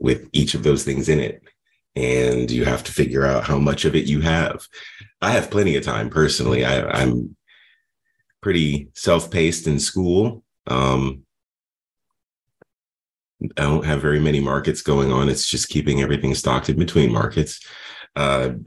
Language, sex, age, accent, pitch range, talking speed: English, male, 30-49, American, 65-85 Hz, 155 wpm